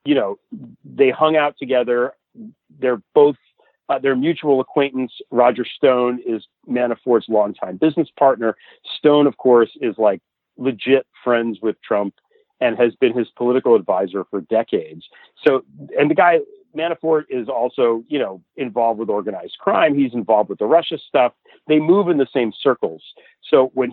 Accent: American